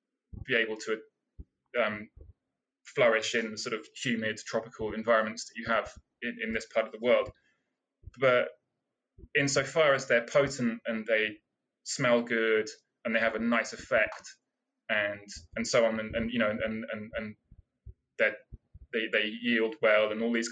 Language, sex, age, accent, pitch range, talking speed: English, male, 20-39, British, 110-125 Hz, 165 wpm